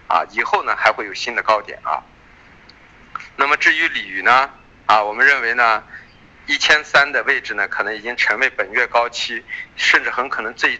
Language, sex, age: Chinese, male, 50-69